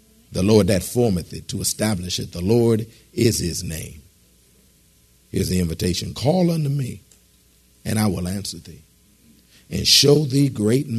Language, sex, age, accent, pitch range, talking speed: English, male, 50-69, American, 90-115 Hz, 160 wpm